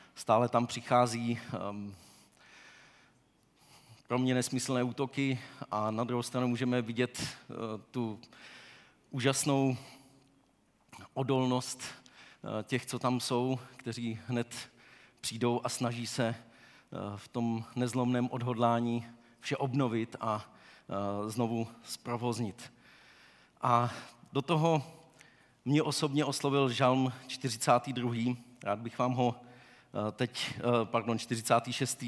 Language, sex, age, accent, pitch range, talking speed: Czech, male, 40-59, native, 115-130 Hz, 105 wpm